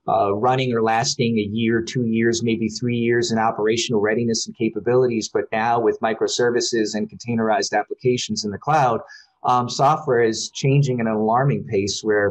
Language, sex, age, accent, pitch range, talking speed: English, male, 30-49, American, 110-125 Hz, 165 wpm